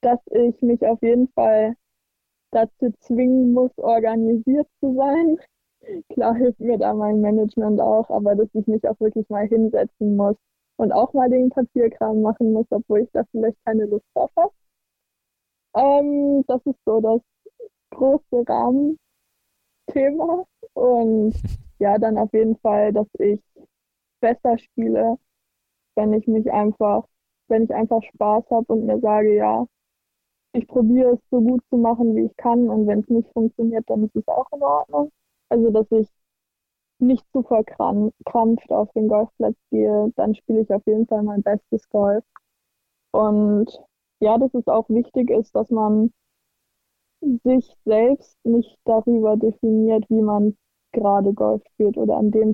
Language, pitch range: German, 215-245 Hz